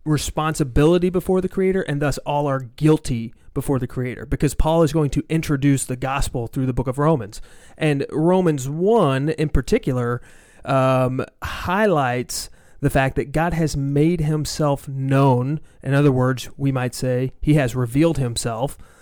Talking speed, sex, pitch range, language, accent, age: 160 wpm, male, 135-160 Hz, English, American, 30-49